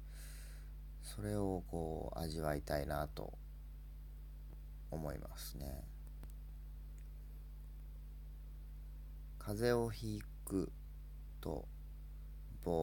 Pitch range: 75-80 Hz